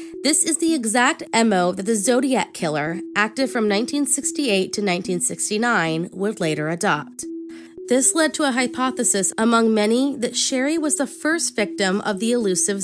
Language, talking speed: English, 155 wpm